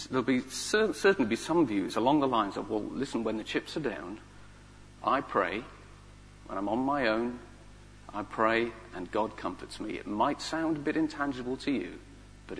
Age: 40-59